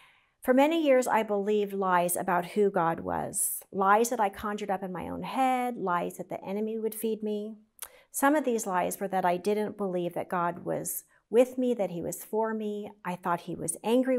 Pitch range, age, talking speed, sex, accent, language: 185-230 Hz, 40-59, 210 wpm, female, American, English